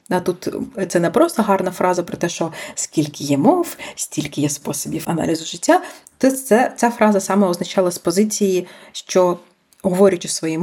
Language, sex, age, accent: Ukrainian, female, 30-49, native